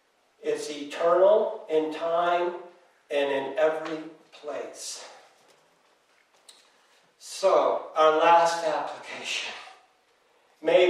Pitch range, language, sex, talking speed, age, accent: 180-270 Hz, English, male, 70 wpm, 60-79, American